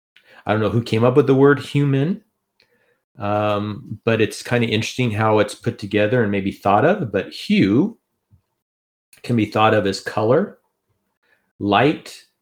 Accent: American